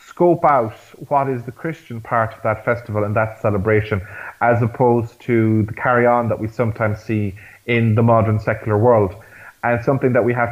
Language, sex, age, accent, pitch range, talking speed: English, male, 30-49, Irish, 110-130 Hz, 175 wpm